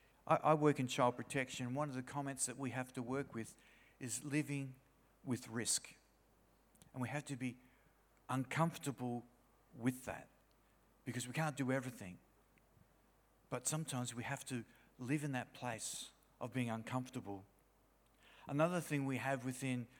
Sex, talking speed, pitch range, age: male, 145 wpm, 125-150 Hz, 50-69